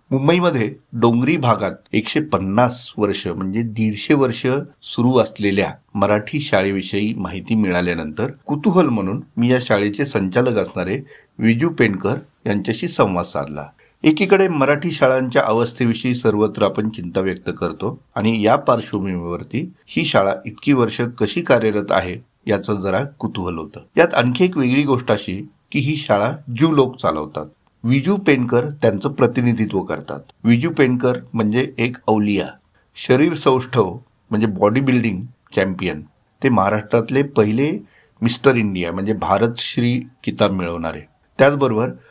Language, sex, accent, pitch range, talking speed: Marathi, male, native, 105-130 Hz, 130 wpm